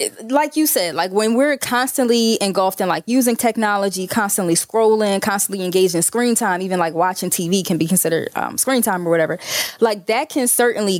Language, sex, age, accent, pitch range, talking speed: English, female, 20-39, American, 185-240 Hz, 185 wpm